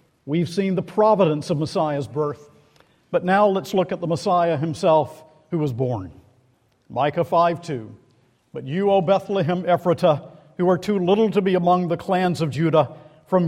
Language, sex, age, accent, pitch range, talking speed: English, male, 50-69, American, 145-180 Hz, 165 wpm